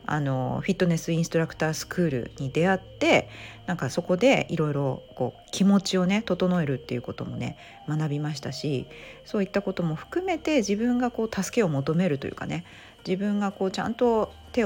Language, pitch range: Japanese, 160-245 Hz